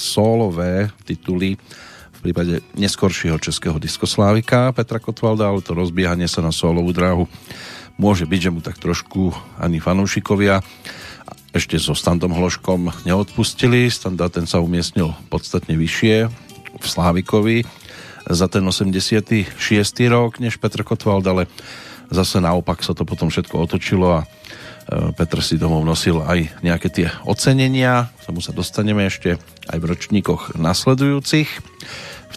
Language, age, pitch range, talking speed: Slovak, 40-59, 85-110 Hz, 135 wpm